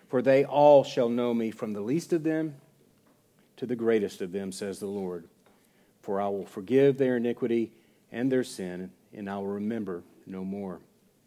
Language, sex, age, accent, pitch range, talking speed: English, male, 50-69, American, 120-150 Hz, 180 wpm